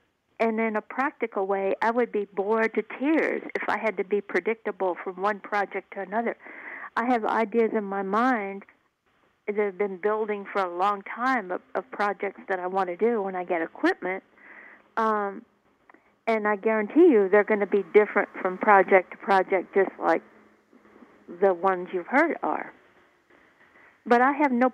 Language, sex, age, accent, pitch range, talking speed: English, female, 50-69, American, 195-230 Hz, 175 wpm